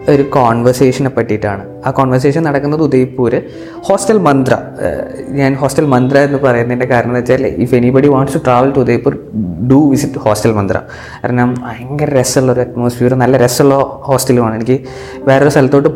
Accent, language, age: native, Malayalam, 20-39